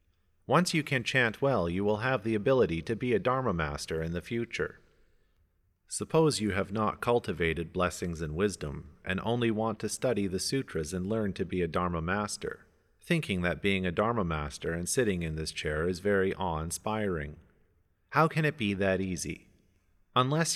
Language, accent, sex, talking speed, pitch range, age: English, American, male, 180 wpm, 90-115 Hz, 40-59